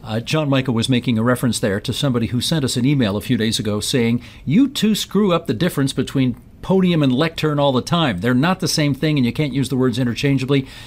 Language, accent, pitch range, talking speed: English, American, 120-150 Hz, 250 wpm